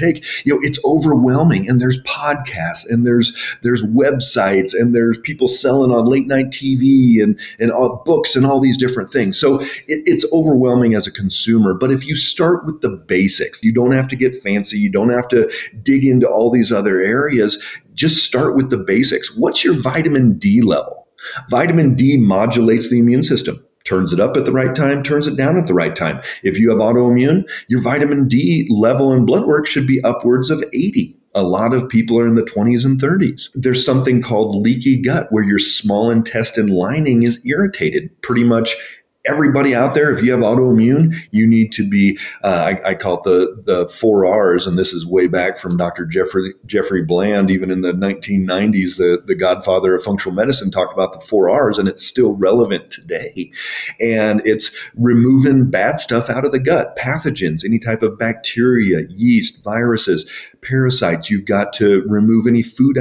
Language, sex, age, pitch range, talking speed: English, male, 40-59, 105-135 Hz, 190 wpm